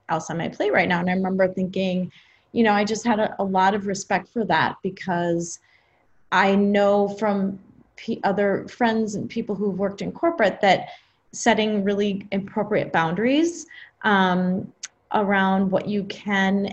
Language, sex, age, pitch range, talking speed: English, female, 30-49, 185-215 Hz, 160 wpm